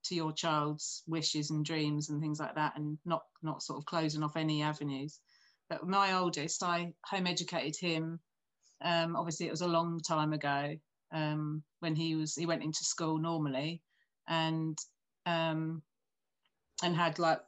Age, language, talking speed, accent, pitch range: 30-49, English, 165 wpm, British, 155-175 Hz